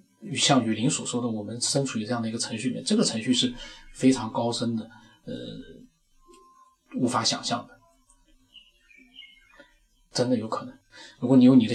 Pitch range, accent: 115-175 Hz, native